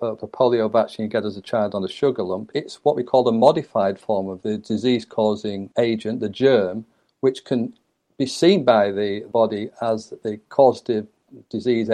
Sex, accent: male, British